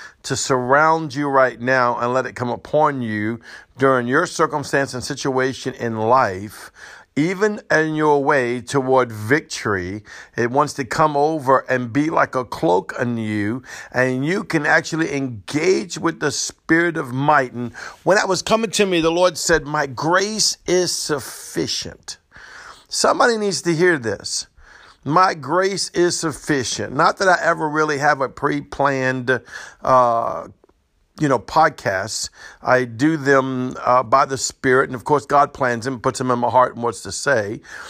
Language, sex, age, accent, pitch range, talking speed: English, male, 50-69, American, 125-160 Hz, 165 wpm